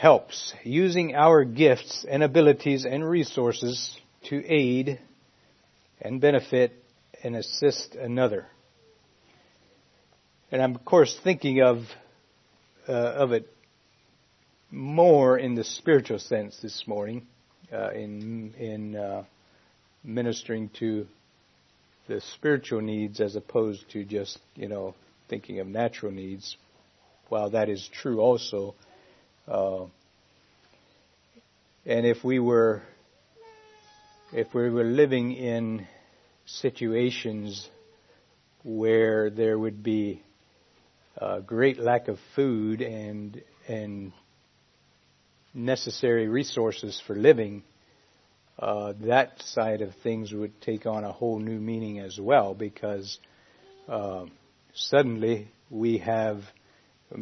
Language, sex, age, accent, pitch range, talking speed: English, male, 50-69, American, 105-125 Hz, 105 wpm